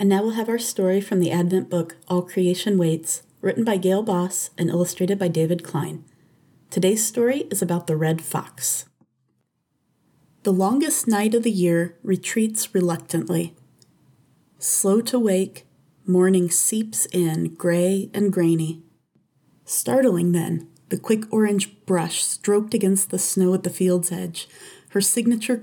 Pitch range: 170-205 Hz